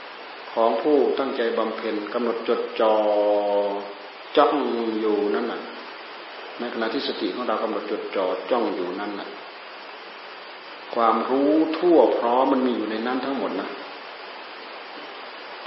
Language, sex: Thai, male